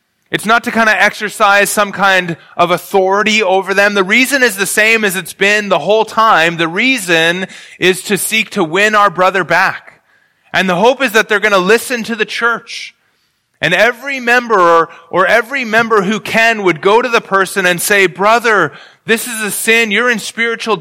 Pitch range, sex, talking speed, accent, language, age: 165-225 Hz, male, 195 wpm, American, English, 30-49